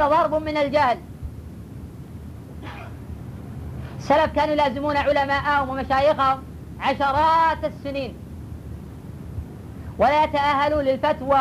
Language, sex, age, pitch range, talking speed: Arabic, female, 40-59, 270-300 Hz, 70 wpm